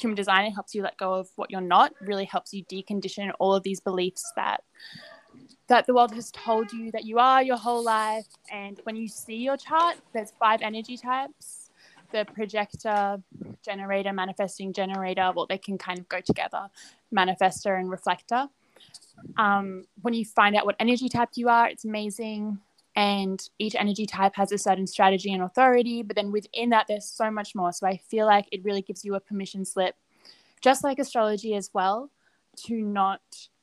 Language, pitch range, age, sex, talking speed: English, 190-230 Hz, 10-29, female, 185 wpm